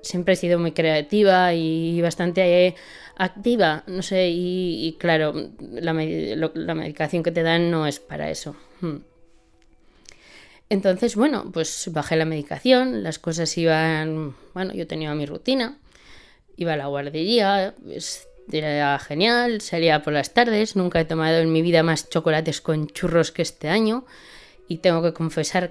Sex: female